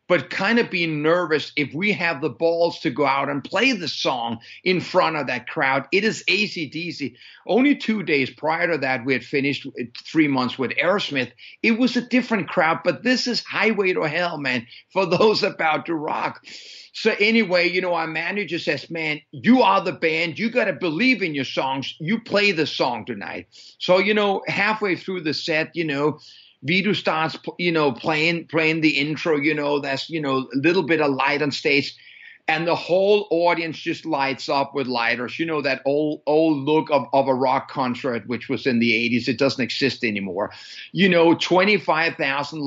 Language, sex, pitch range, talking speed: English, male, 135-180 Hz, 195 wpm